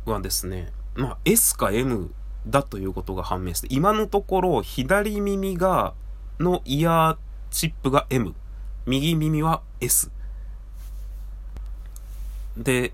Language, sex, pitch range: Japanese, male, 95-155 Hz